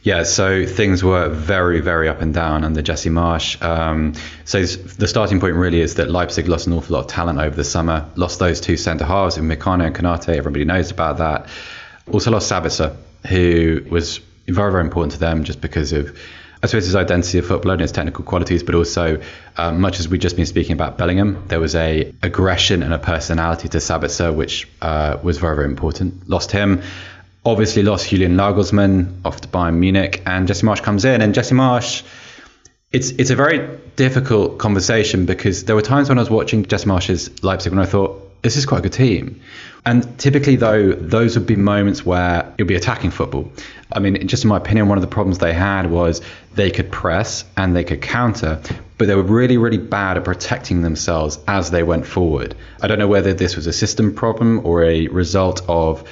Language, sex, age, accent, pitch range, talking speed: English, male, 20-39, British, 85-105 Hz, 205 wpm